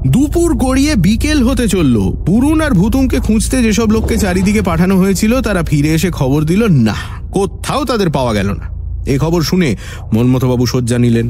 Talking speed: 200 wpm